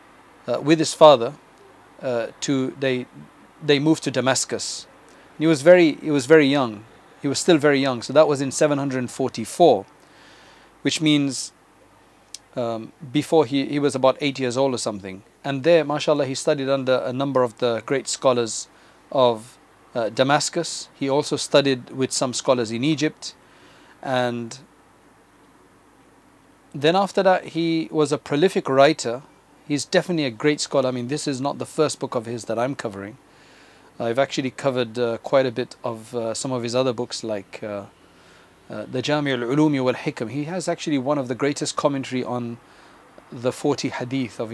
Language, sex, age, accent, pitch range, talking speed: English, male, 40-59, South African, 120-150 Hz, 170 wpm